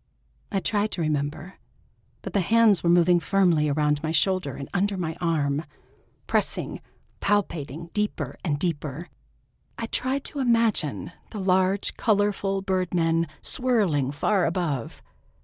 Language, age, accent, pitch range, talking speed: English, 40-59, American, 150-215 Hz, 130 wpm